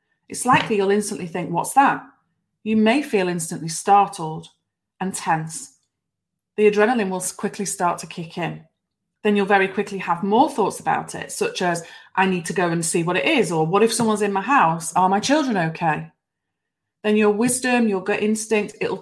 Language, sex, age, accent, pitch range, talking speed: English, female, 30-49, British, 175-220 Hz, 190 wpm